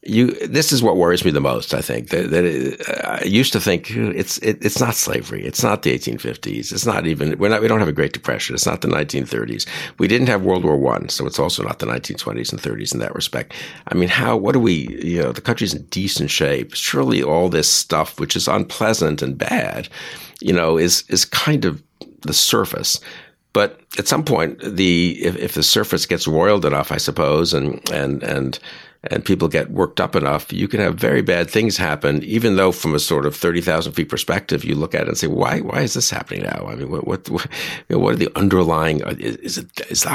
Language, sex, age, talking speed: English, male, 60-79, 225 wpm